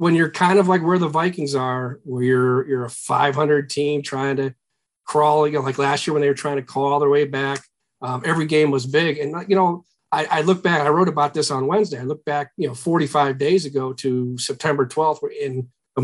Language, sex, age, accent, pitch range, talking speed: English, male, 40-59, American, 135-165 Hz, 245 wpm